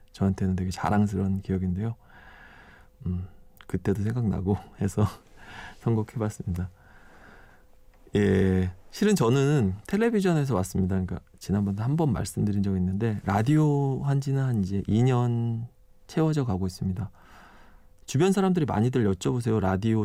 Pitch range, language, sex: 95-125 Hz, Korean, male